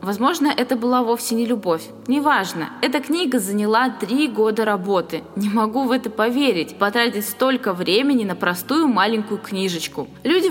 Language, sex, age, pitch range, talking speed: Russian, female, 20-39, 195-250 Hz, 150 wpm